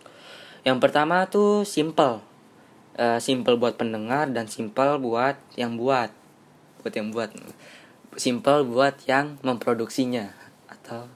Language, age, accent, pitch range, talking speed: Indonesian, 10-29, native, 115-135 Hz, 115 wpm